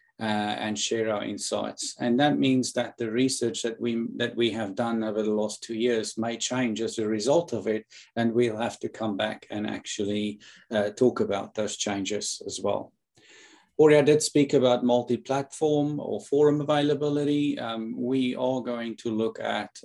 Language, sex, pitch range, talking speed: English, male, 110-135 Hz, 180 wpm